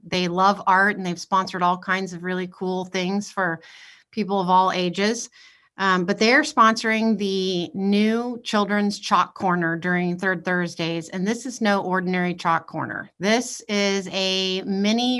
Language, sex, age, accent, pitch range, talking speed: English, female, 30-49, American, 180-205 Hz, 160 wpm